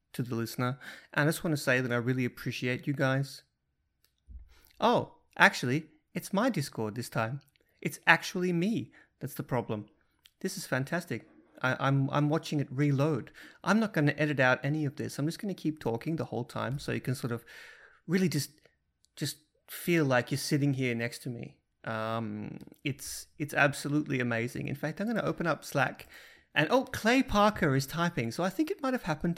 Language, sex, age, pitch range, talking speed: English, male, 30-49, 110-155 Hz, 190 wpm